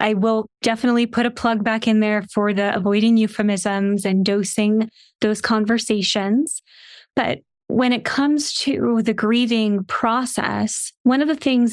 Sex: female